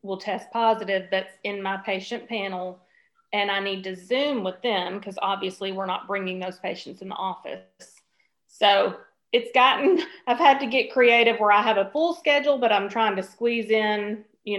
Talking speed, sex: 190 wpm, female